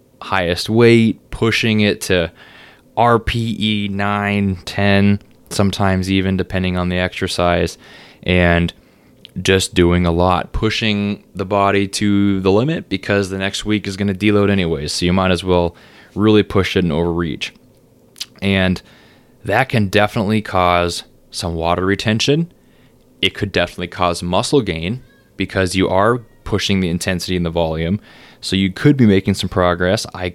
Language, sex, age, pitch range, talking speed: English, male, 20-39, 90-110 Hz, 150 wpm